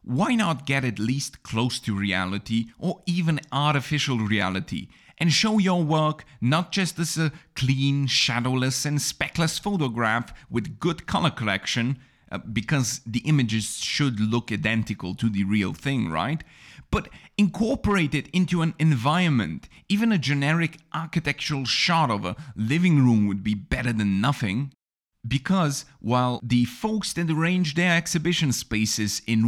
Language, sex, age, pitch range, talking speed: English, male, 30-49, 115-160 Hz, 145 wpm